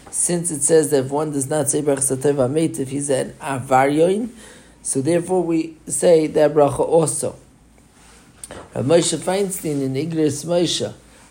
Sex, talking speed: male, 155 wpm